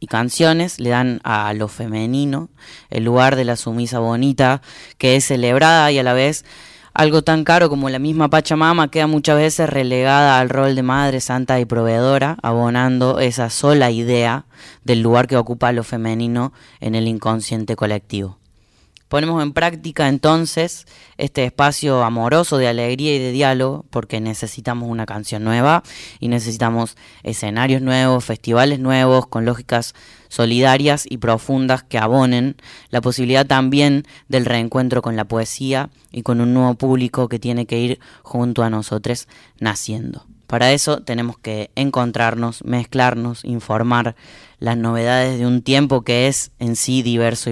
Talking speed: 150 wpm